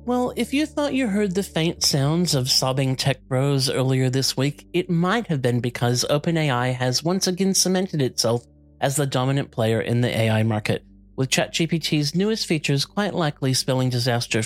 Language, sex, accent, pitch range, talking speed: English, male, American, 120-165 Hz, 180 wpm